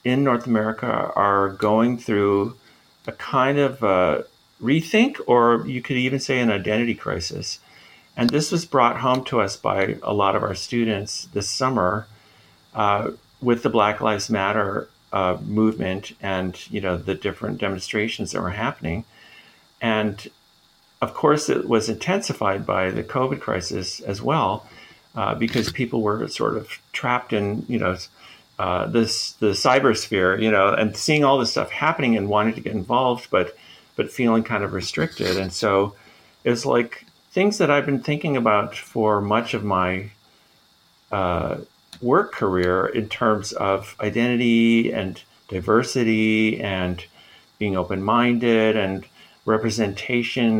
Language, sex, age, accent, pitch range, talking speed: English, male, 50-69, American, 100-120 Hz, 145 wpm